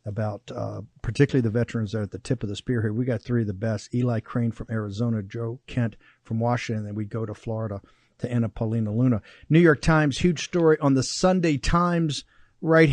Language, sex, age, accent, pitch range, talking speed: English, male, 50-69, American, 115-150 Hz, 225 wpm